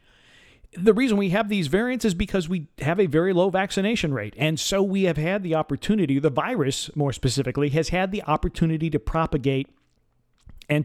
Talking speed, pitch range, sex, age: 185 wpm, 135-175 Hz, male, 50-69